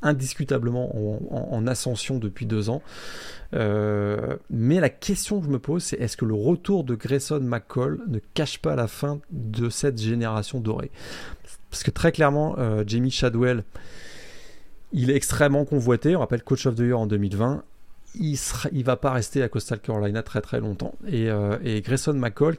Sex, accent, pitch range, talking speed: male, French, 115-150 Hz, 175 wpm